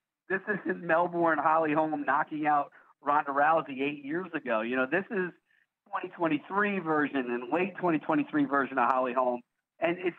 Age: 40-59